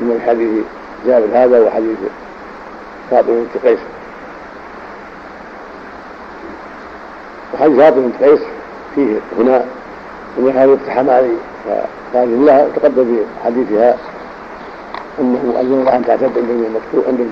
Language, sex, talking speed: Arabic, male, 95 wpm